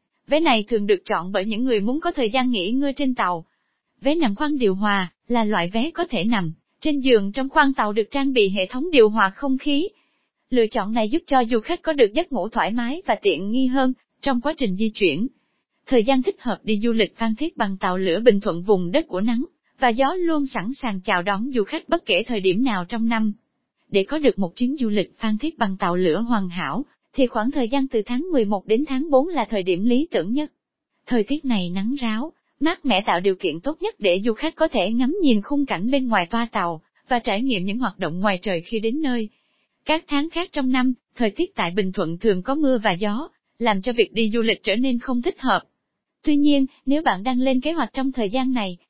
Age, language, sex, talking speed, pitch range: 20-39, Vietnamese, female, 245 wpm, 210-280 Hz